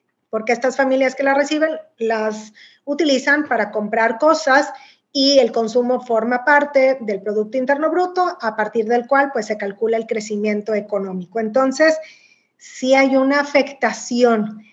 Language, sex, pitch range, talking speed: Spanish, female, 230-280 Hz, 145 wpm